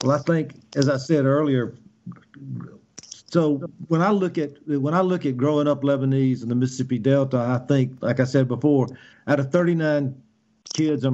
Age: 50-69